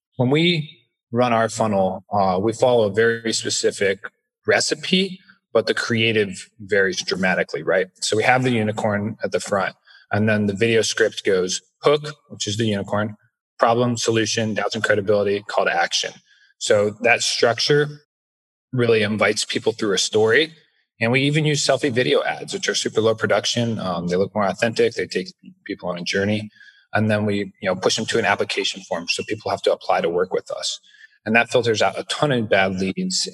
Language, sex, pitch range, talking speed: English, male, 105-145 Hz, 190 wpm